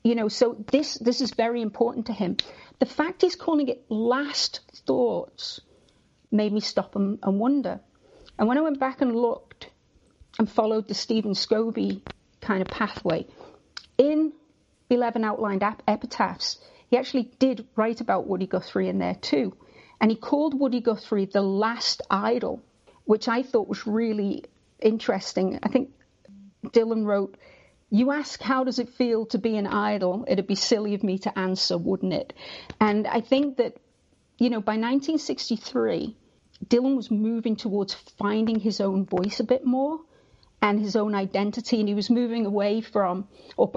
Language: English